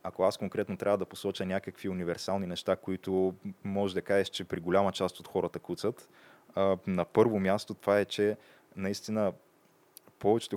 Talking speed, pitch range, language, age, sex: 160 wpm, 90-100 Hz, Bulgarian, 20-39, male